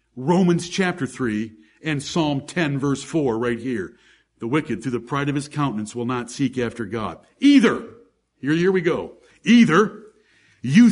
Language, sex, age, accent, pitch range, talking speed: English, male, 60-79, American, 115-175 Hz, 165 wpm